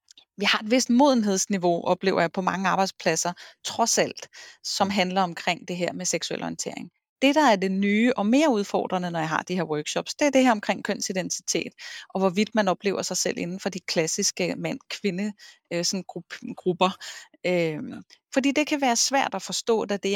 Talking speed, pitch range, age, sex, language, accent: 180 wpm, 180-230 Hz, 30-49, female, Danish, native